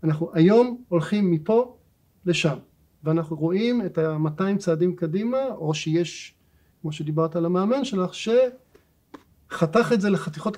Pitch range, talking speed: 155-190 Hz, 125 wpm